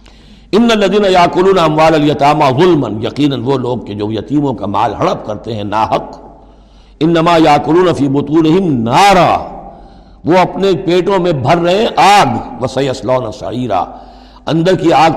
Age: 60-79